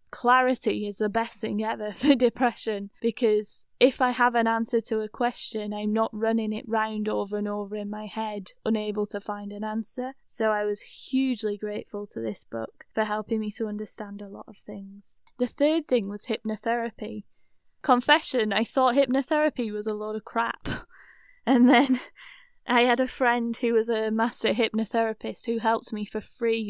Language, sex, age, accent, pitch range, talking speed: English, female, 10-29, British, 210-245 Hz, 180 wpm